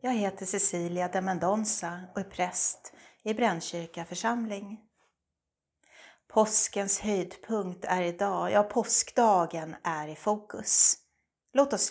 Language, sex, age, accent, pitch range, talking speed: Swedish, female, 30-49, native, 175-220 Hz, 105 wpm